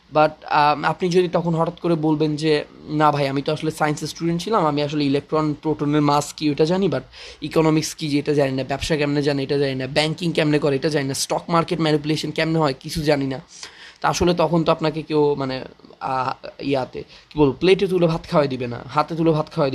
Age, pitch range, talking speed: 20-39, 145-160 Hz, 215 wpm